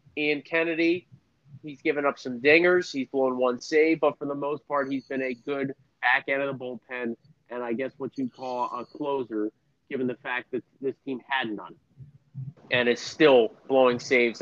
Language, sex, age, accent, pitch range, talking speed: English, male, 30-49, American, 125-145 Hz, 190 wpm